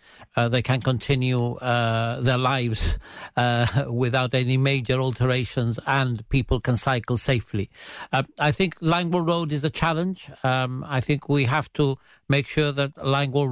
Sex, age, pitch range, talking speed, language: male, 50-69, 135-160 Hz, 155 wpm, English